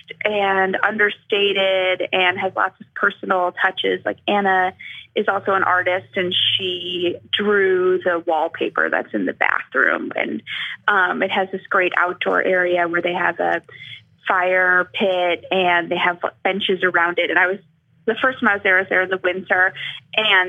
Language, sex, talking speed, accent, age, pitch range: English, female, 175 wpm, American, 20-39, 185-245 Hz